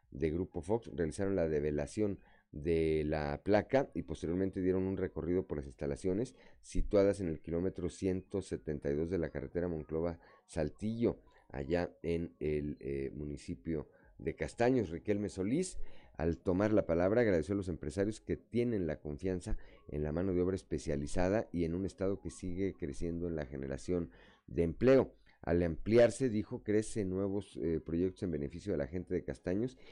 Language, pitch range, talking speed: Spanish, 80-100 Hz, 160 wpm